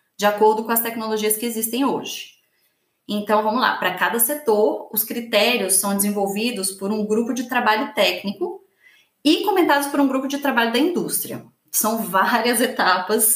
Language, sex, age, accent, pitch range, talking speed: English, female, 20-39, Brazilian, 205-260 Hz, 160 wpm